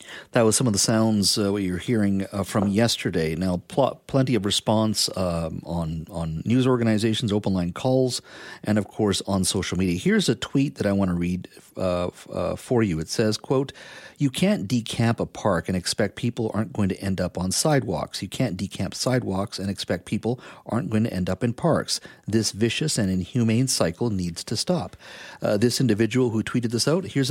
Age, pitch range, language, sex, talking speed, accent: 50-69, 95-125 Hz, English, male, 195 wpm, American